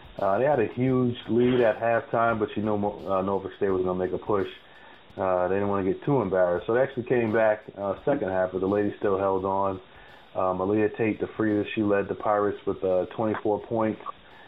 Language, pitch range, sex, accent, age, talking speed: English, 90-105 Hz, male, American, 30-49, 230 wpm